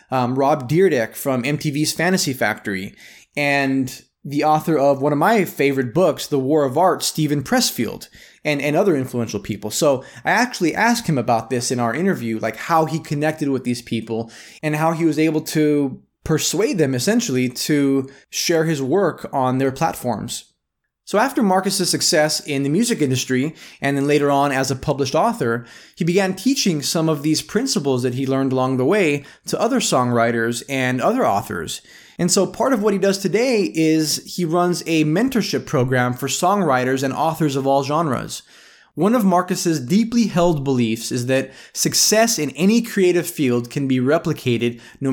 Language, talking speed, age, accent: English, 175 wpm, 20-39, American